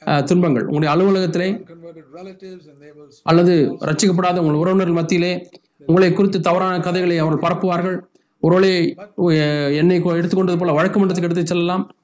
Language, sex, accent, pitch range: Tamil, male, native, 165-200 Hz